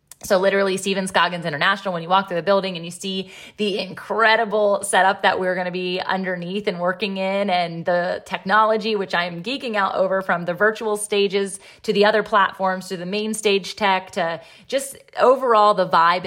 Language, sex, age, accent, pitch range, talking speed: English, female, 20-39, American, 175-210 Hz, 190 wpm